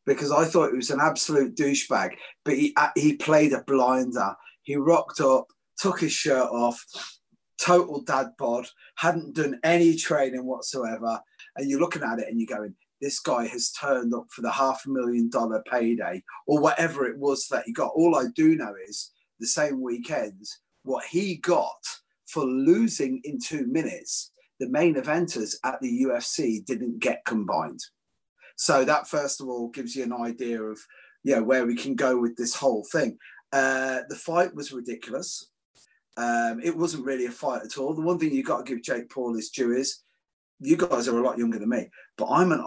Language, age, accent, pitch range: English, 30-49, British, 120-155 Hz